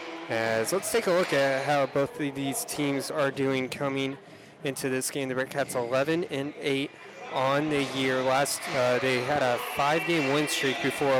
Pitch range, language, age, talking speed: 125-145 Hz, English, 20-39, 180 wpm